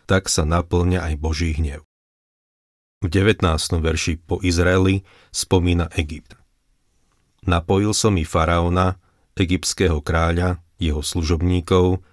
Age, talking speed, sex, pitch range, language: 40-59, 105 wpm, male, 80-95 Hz, Slovak